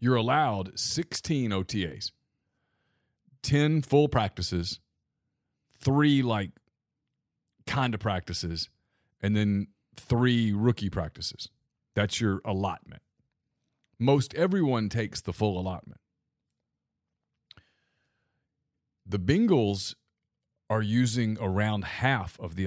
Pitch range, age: 95-125 Hz, 30-49